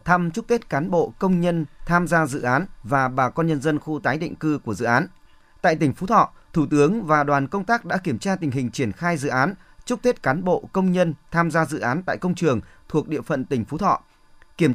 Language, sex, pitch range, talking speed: Vietnamese, male, 145-190 Hz, 250 wpm